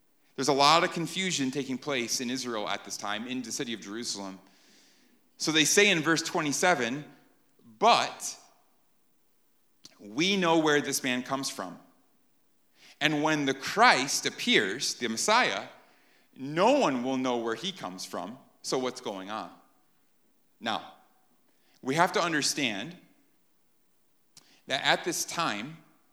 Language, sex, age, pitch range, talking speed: English, male, 30-49, 140-190 Hz, 135 wpm